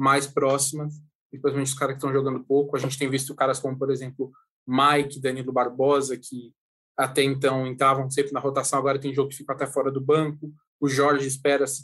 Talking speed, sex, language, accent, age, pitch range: 200 wpm, male, Portuguese, Brazilian, 20-39, 135-160 Hz